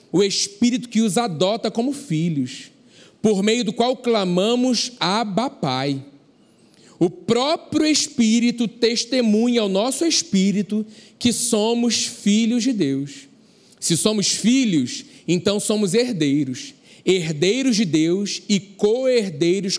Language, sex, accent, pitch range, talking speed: Portuguese, male, Brazilian, 180-230 Hz, 110 wpm